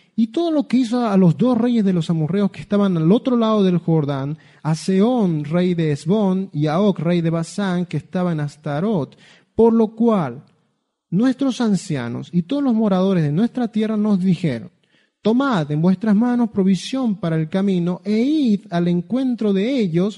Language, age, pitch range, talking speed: Spanish, 30-49, 170-220 Hz, 185 wpm